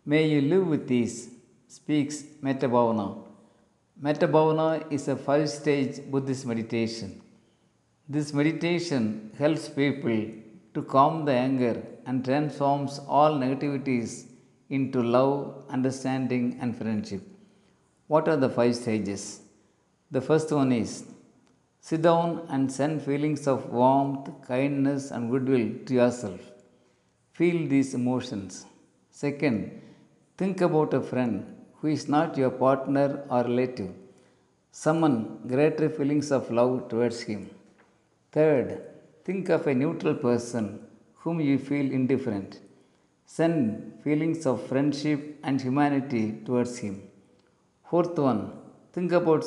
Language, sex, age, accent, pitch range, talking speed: Tamil, male, 50-69, native, 125-150 Hz, 120 wpm